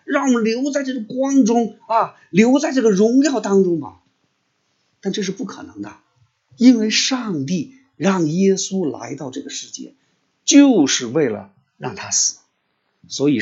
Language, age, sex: Chinese, 50-69, male